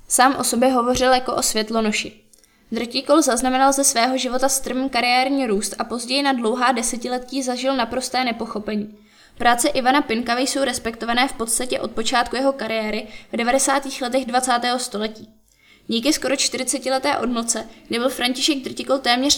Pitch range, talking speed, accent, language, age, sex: 230-260 Hz, 150 wpm, native, Czech, 20-39, female